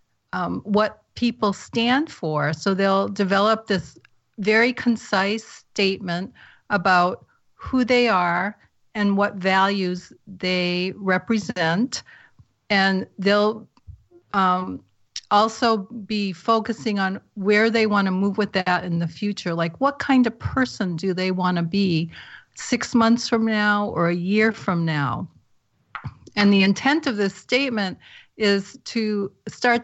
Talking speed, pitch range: 135 wpm, 190-225 Hz